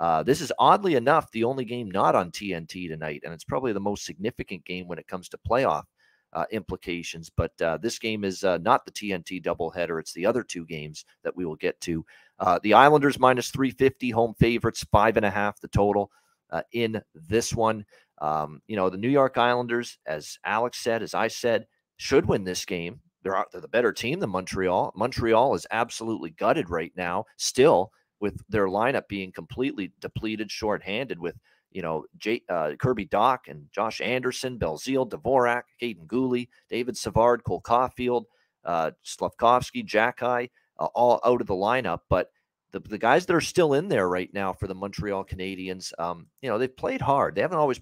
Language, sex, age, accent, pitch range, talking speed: English, male, 40-59, American, 90-125 Hz, 190 wpm